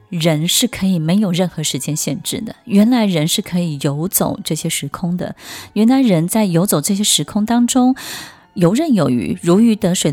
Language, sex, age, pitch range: Chinese, female, 20-39, 155-205 Hz